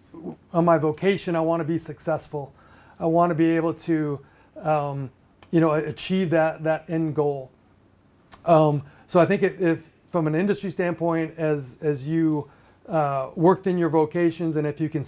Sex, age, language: male, 40-59, English